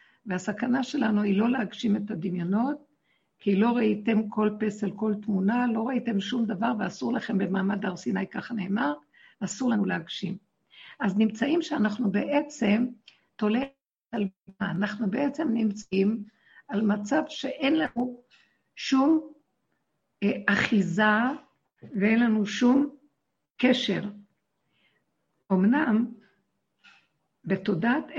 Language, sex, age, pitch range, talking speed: Hebrew, female, 60-79, 200-250 Hz, 105 wpm